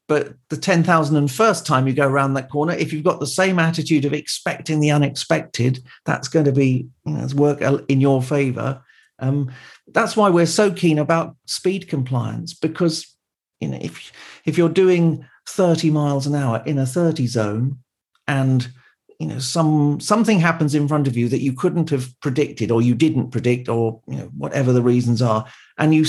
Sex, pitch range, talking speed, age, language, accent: male, 135-165 Hz, 190 wpm, 50-69, English, British